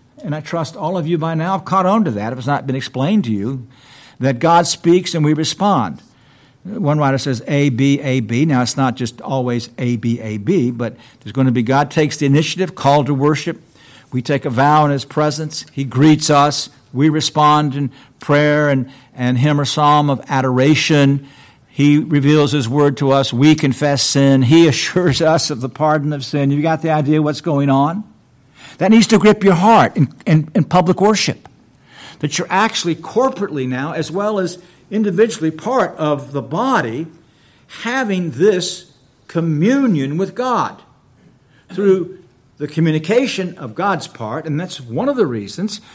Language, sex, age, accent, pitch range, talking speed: English, male, 60-79, American, 135-175 Hz, 175 wpm